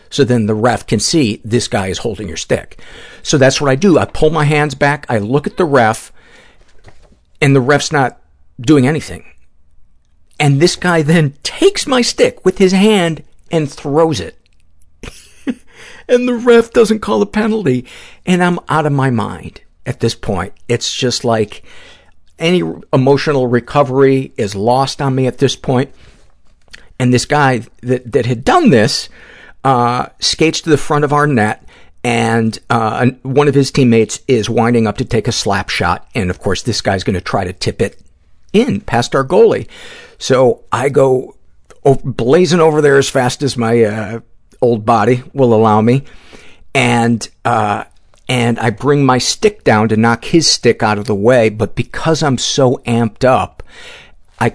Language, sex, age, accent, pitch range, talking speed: English, male, 50-69, American, 115-150 Hz, 175 wpm